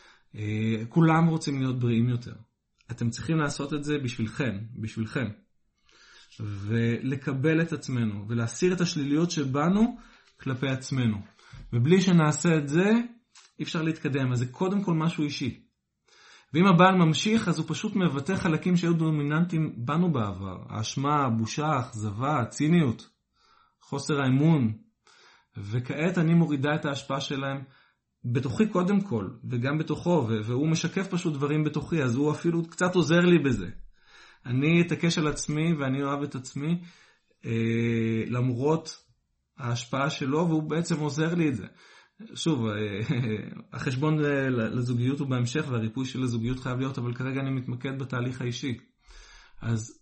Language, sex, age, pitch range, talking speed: Hebrew, male, 30-49, 120-160 Hz, 135 wpm